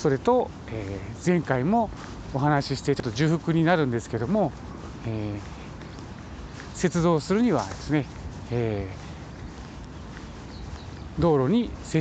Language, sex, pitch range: Japanese, male, 110-165 Hz